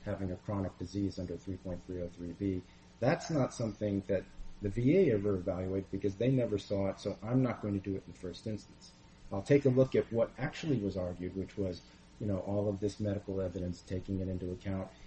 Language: English